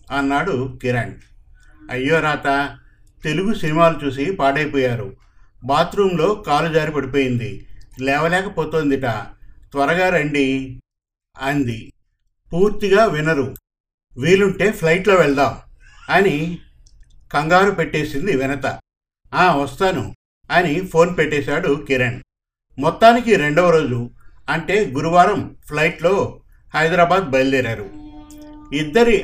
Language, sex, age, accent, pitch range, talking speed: Telugu, male, 50-69, native, 130-170 Hz, 80 wpm